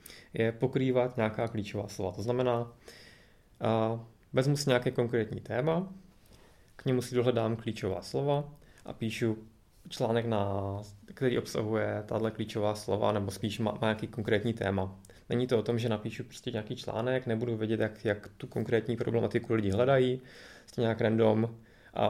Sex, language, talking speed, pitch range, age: male, Czech, 150 wpm, 105-125 Hz, 20-39